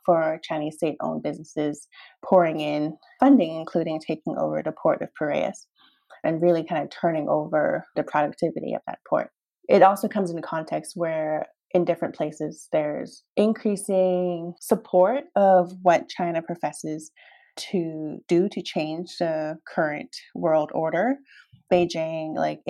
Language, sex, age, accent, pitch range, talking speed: English, female, 20-39, American, 155-195 Hz, 140 wpm